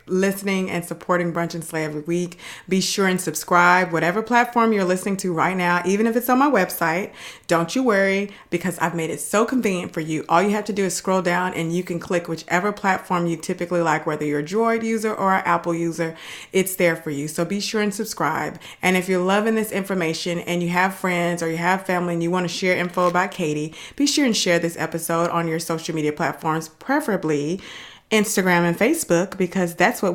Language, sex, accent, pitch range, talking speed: English, female, American, 170-220 Hz, 220 wpm